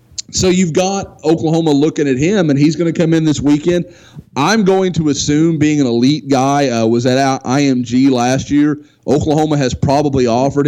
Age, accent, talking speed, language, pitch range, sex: 30-49, American, 185 wpm, English, 120-150 Hz, male